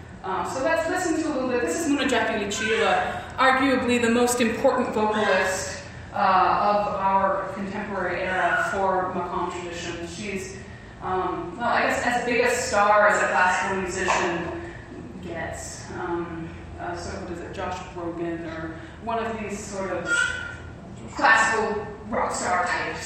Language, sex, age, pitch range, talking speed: English, female, 20-39, 195-240 Hz, 155 wpm